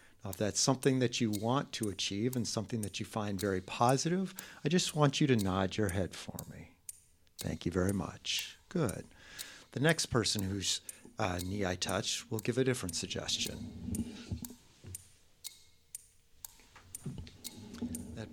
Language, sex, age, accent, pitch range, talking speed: English, male, 50-69, American, 100-130 Hz, 140 wpm